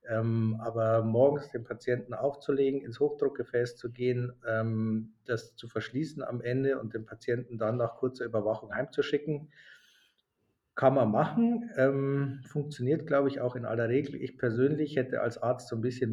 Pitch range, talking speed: 110-140 Hz, 160 wpm